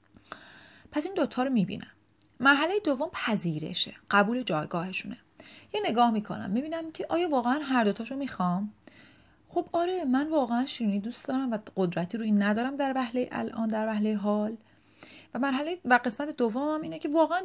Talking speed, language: 160 wpm, Persian